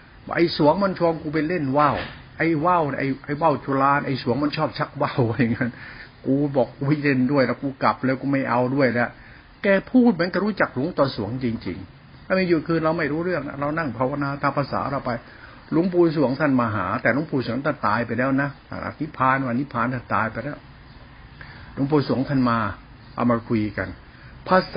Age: 60-79